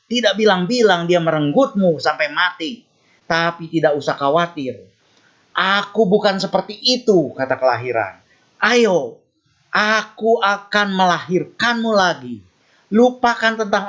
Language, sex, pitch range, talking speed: Indonesian, male, 150-225 Hz, 100 wpm